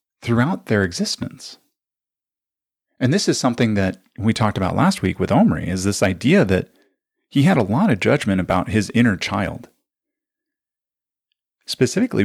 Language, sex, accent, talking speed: English, male, American, 145 wpm